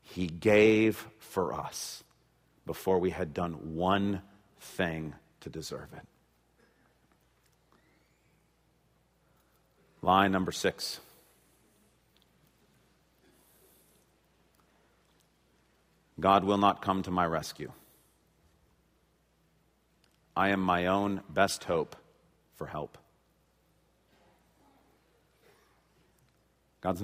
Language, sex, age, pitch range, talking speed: English, male, 40-59, 95-140 Hz, 70 wpm